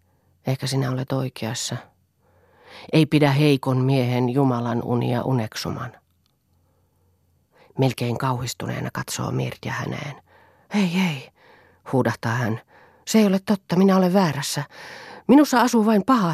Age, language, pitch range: 40-59, Finnish, 130-175 Hz